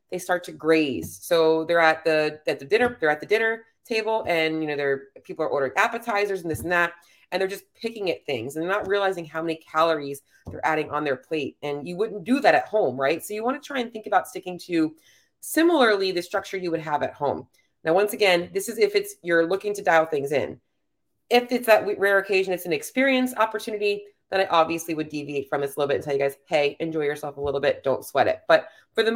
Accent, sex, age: American, female, 30-49